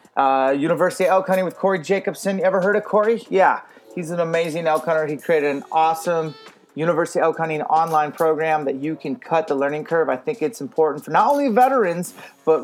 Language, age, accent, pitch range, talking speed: English, 30-49, American, 150-180 Hz, 205 wpm